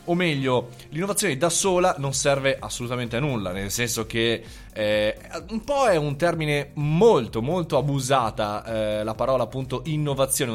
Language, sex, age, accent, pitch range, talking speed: Italian, male, 20-39, native, 115-155 Hz, 155 wpm